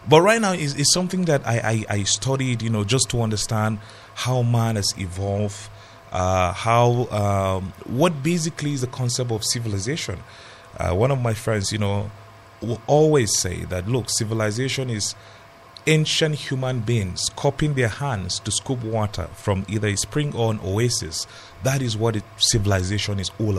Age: 30-49